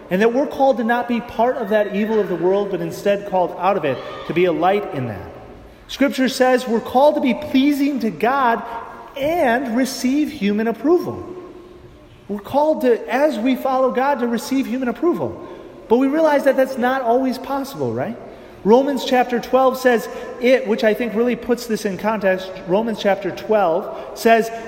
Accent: American